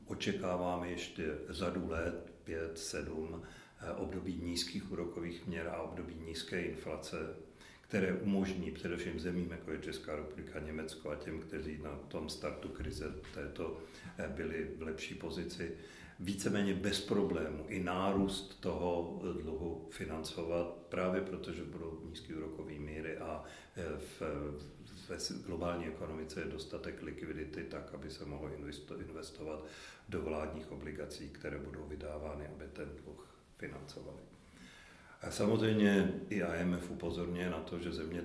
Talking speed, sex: 125 wpm, male